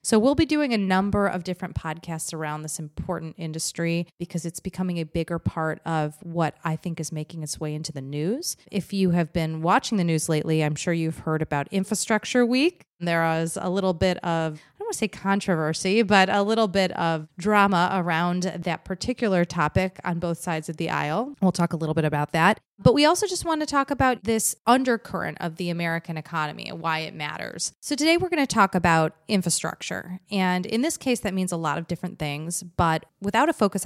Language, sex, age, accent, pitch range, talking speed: English, female, 30-49, American, 155-195 Hz, 215 wpm